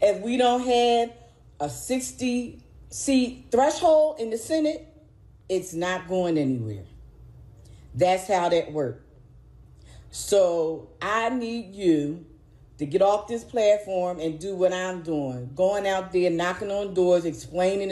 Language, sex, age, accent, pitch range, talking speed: English, female, 40-59, American, 155-195 Hz, 130 wpm